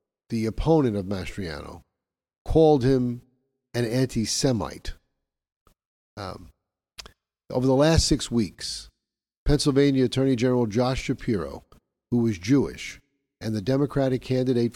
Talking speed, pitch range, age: 100 wpm, 110-150 Hz, 50-69